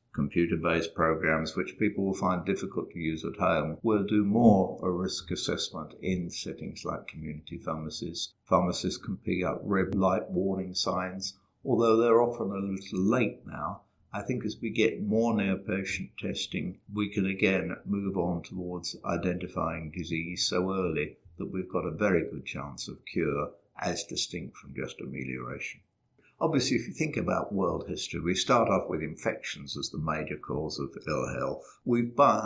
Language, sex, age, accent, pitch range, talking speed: English, male, 50-69, British, 85-100 Hz, 165 wpm